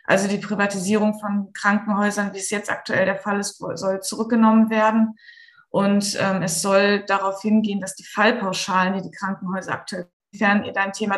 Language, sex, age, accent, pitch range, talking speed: German, female, 20-39, German, 185-210 Hz, 175 wpm